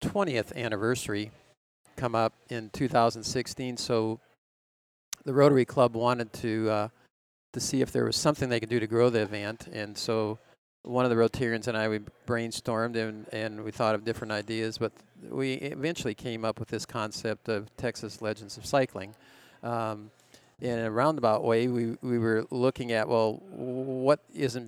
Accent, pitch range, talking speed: American, 105-125 Hz, 170 wpm